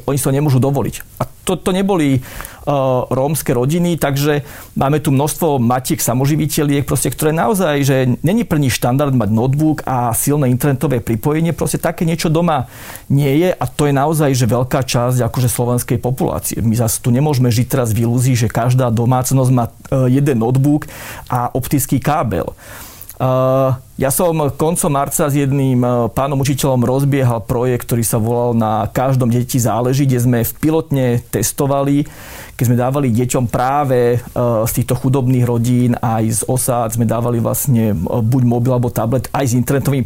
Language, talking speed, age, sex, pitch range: Slovak, 165 wpm, 40-59, male, 120-145 Hz